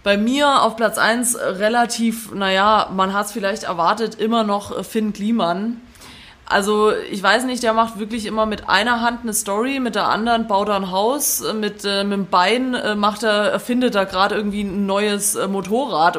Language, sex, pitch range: German, female, 200-240 Hz